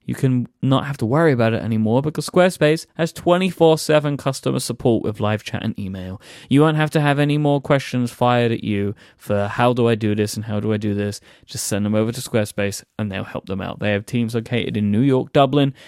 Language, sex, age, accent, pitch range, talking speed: English, male, 20-39, British, 110-150 Hz, 235 wpm